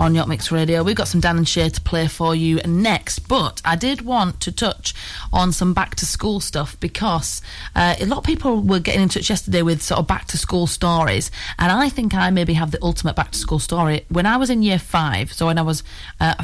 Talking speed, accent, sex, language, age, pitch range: 225 wpm, British, female, English, 30-49, 155-190 Hz